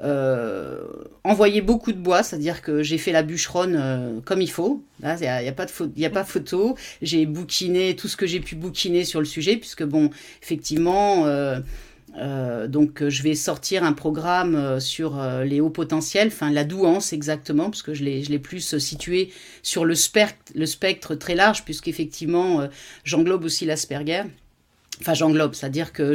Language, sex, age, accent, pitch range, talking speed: French, female, 40-59, French, 145-180 Hz, 185 wpm